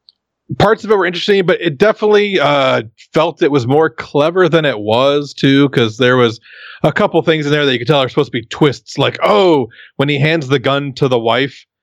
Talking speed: 230 wpm